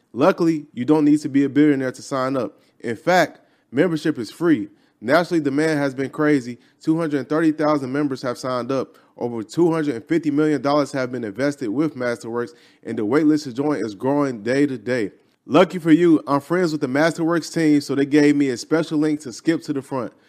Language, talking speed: English, 210 wpm